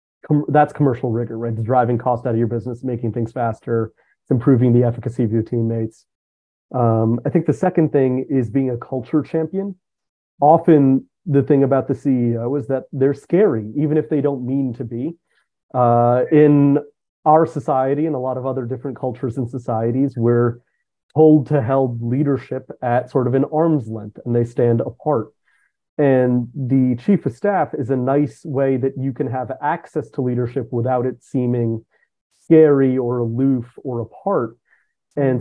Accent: American